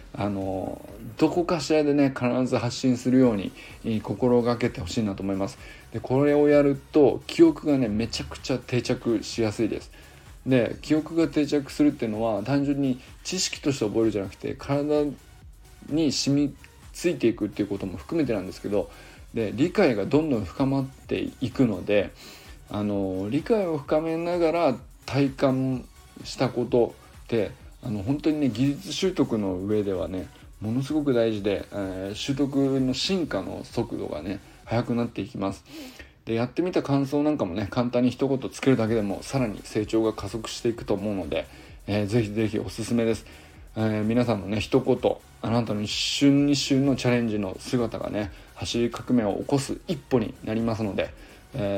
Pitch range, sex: 105-140 Hz, male